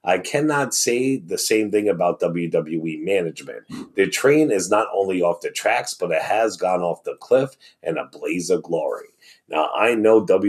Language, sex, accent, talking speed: English, male, American, 185 wpm